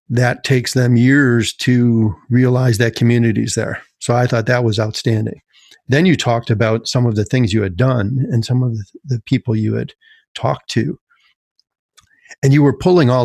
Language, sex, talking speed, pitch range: English, male, 185 wpm, 115-145 Hz